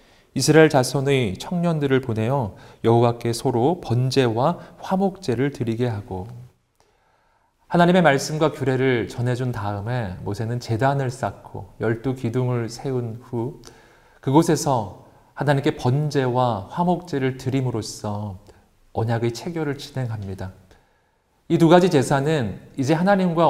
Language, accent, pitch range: Korean, native, 110-150 Hz